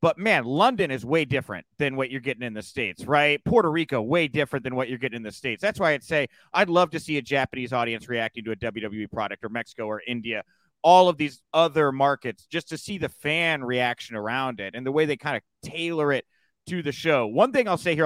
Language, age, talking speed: English, 30-49, 245 wpm